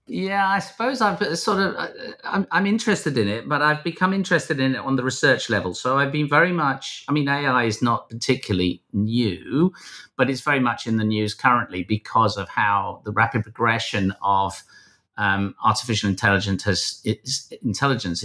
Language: English